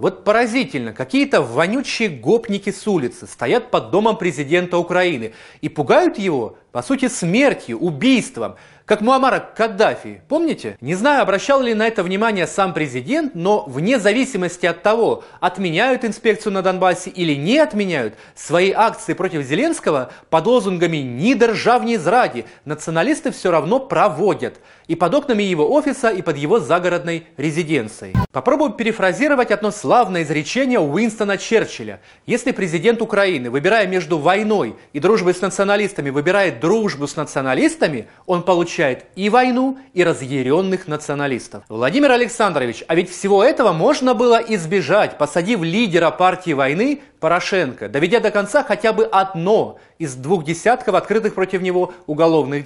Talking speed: 140 wpm